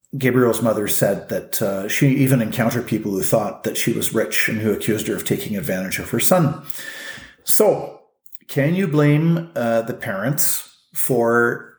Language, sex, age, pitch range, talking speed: English, male, 40-59, 110-135 Hz, 170 wpm